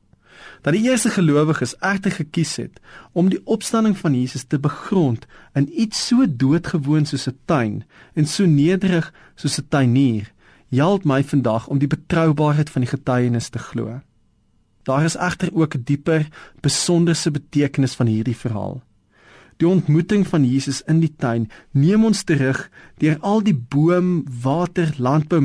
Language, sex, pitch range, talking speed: Dutch, male, 125-165 Hz, 155 wpm